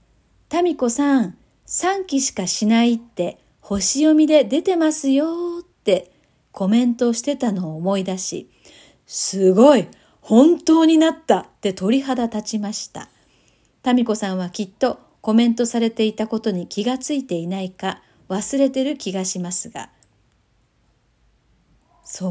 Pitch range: 200-300 Hz